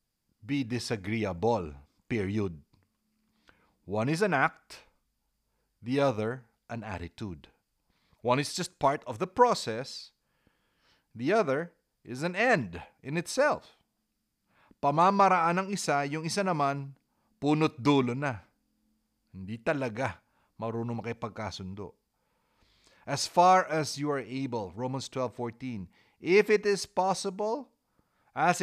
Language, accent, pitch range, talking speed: English, Filipino, 115-180 Hz, 110 wpm